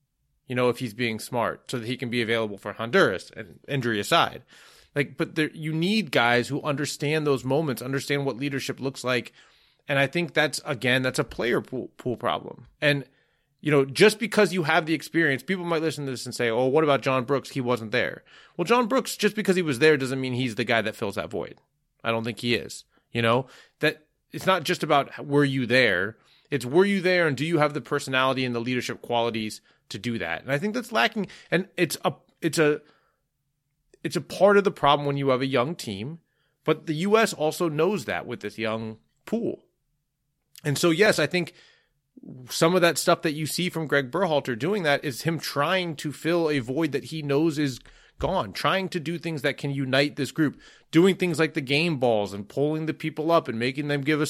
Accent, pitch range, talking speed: American, 130-165 Hz, 220 wpm